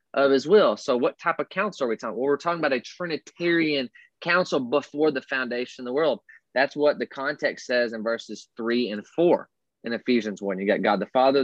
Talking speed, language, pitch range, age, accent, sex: 220 wpm, English, 115-160 Hz, 20-39, American, male